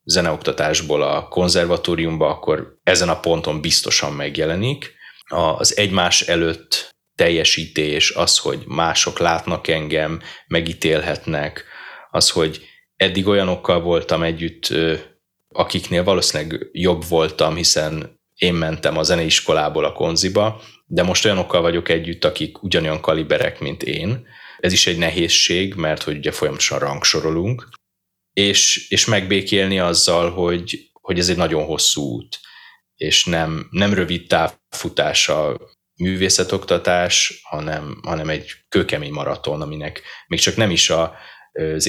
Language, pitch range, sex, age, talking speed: Hungarian, 80-95 Hz, male, 30-49, 120 wpm